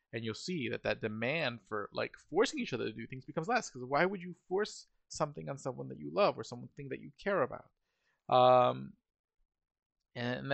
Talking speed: 200 wpm